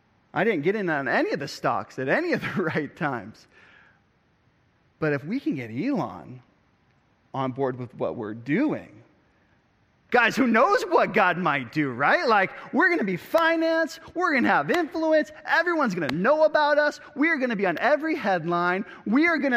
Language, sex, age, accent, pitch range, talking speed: English, male, 30-49, American, 155-255 Hz, 195 wpm